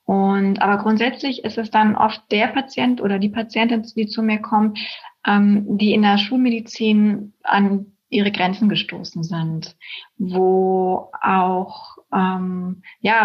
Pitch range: 195-225 Hz